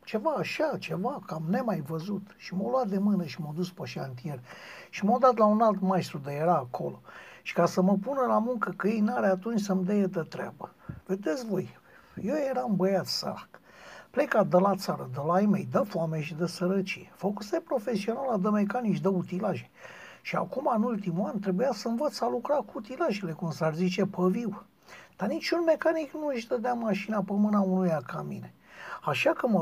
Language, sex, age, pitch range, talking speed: Romanian, male, 60-79, 170-225 Hz, 200 wpm